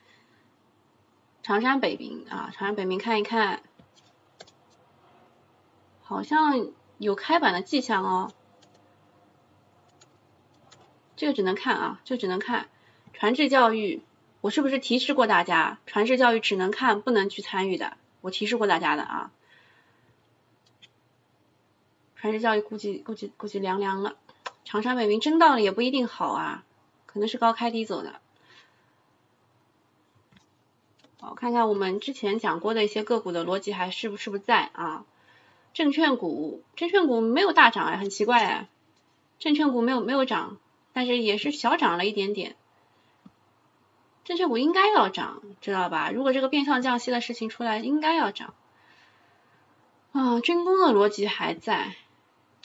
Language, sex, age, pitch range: Chinese, female, 20-39, 205-275 Hz